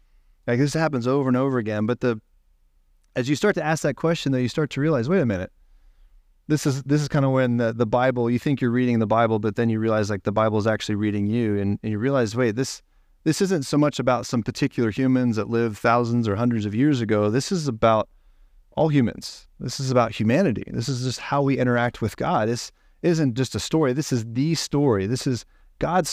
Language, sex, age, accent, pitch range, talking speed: English, male, 30-49, American, 110-140 Hz, 235 wpm